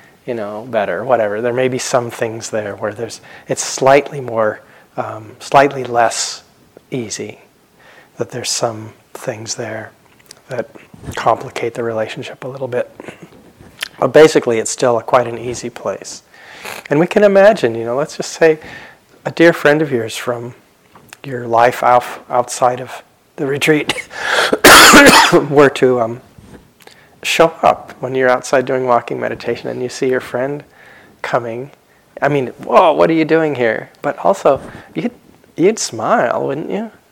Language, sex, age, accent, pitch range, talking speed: English, male, 40-59, American, 120-145 Hz, 150 wpm